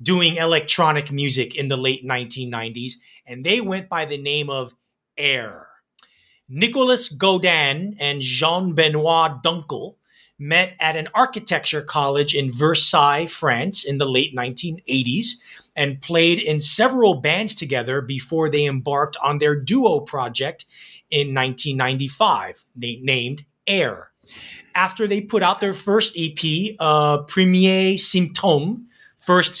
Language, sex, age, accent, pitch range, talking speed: English, male, 30-49, American, 140-185 Hz, 120 wpm